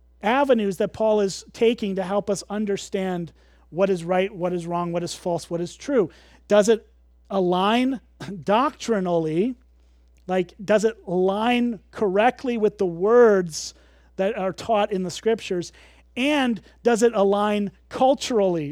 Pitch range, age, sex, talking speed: 180-225 Hz, 30-49, male, 140 wpm